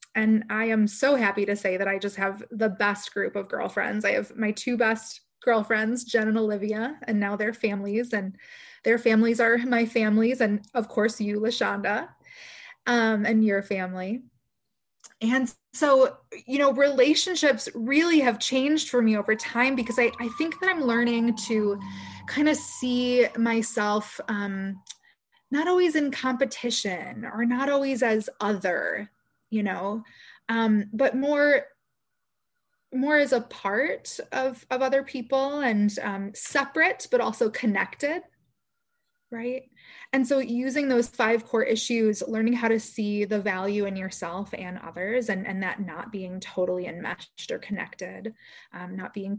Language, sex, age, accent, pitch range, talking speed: English, female, 20-39, American, 205-260 Hz, 155 wpm